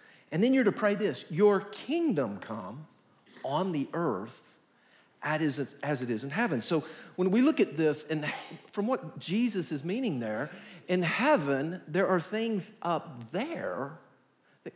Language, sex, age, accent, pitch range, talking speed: English, male, 50-69, American, 125-195 Hz, 155 wpm